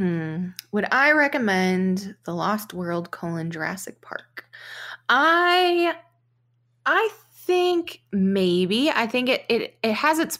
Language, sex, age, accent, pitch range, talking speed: English, female, 20-39, American, 170-215 Hz, 120 wpm